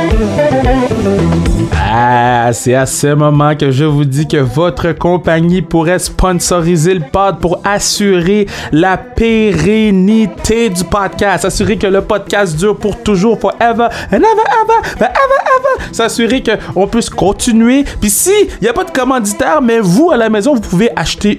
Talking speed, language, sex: 150 wpm, French, male